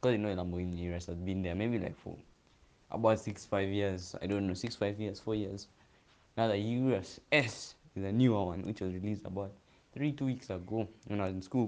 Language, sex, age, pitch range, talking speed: English, male, 20-39, 95-115 Hz, 210 wpm